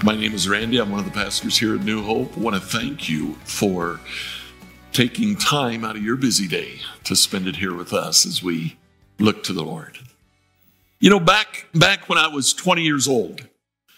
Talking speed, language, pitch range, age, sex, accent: 205 wpm, English, 115-185 Hz, 60-79, male, American